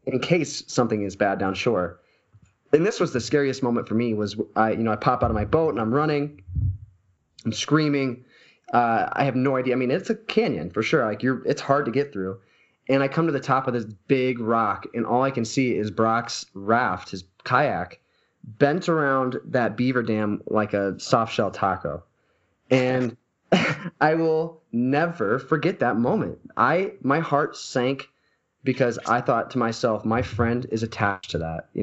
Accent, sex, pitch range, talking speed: American, male, 100-135 Hz, 190 wpm